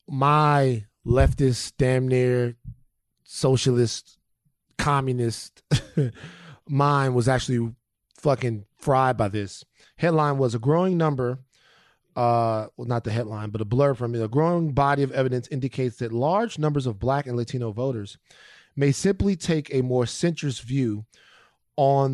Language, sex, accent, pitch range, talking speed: English, male, American, 120-150 Hz, 135 wpm